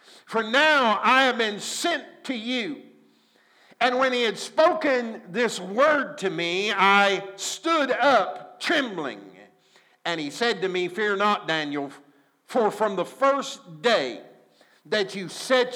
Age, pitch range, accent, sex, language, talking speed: 50-69, 195-260 Hz, American, male, English, 140 wpm